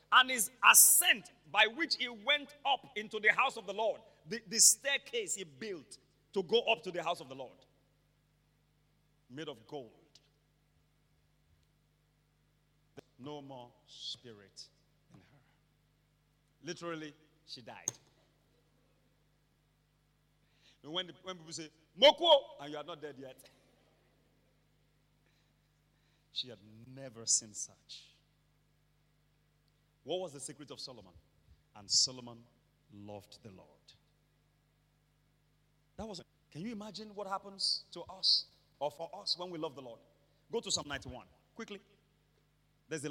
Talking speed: 125 wpm